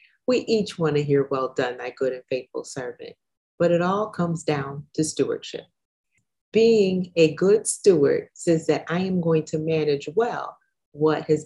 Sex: female